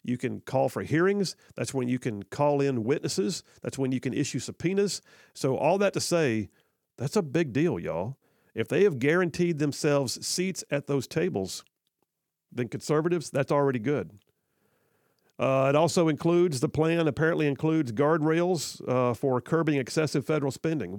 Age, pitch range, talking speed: 50-69, 125-160 Hz, 165 wpm